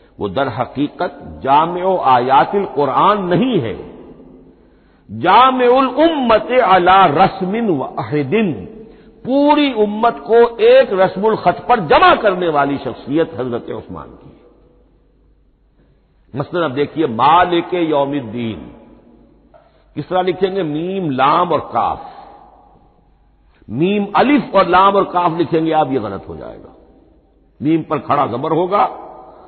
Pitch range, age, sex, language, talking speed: 140-210 Hz, 60-79, male, Hindi, 115 wpm